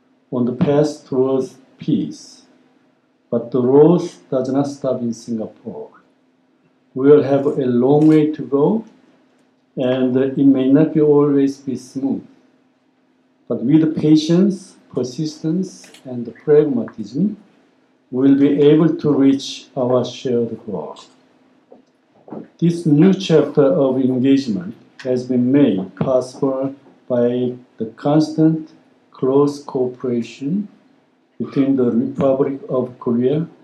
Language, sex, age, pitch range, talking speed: English, male, 60-79, 125-155 Hz, 110 wpm